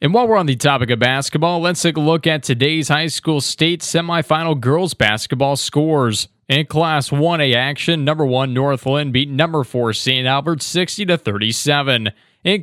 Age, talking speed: 20-39, 185 wpm